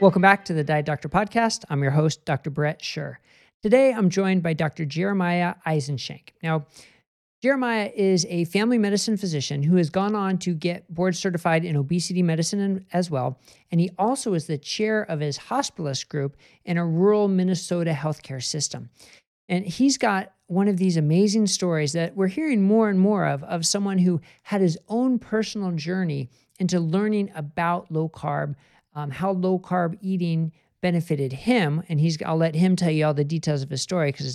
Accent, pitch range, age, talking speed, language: American, 150-195 Hz, 50-69, 180 wpm, English